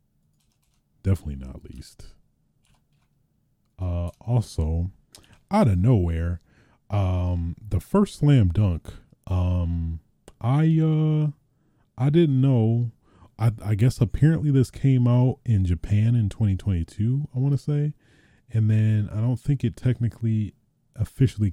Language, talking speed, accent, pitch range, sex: English, 115 wpm, American, 90-120 Hz, male